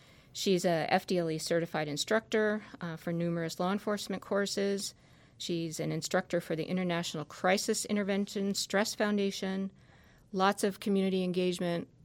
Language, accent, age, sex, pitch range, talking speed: English, American, 50-69, female, 160-190 Hz, 120 wpm